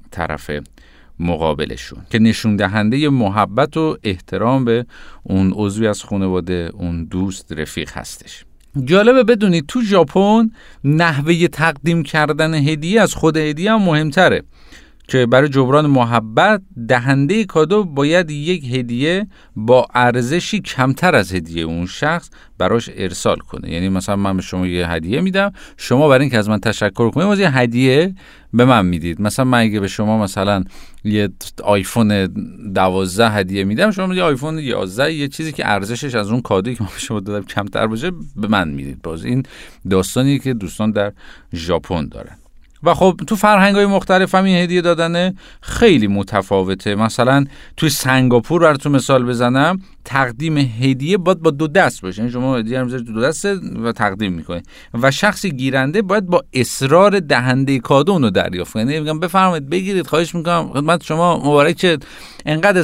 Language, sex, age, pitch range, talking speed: Persian, male, 50-69, 105-170 Hz, 150 wpm